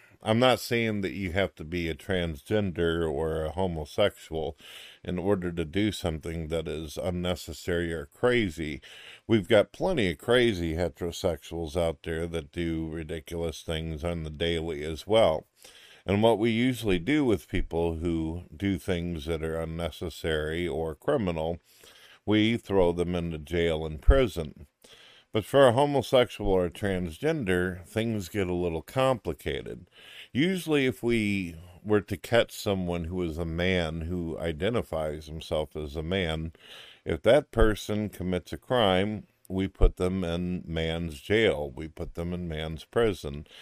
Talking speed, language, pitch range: 150 wpm, English, 80-100 Hz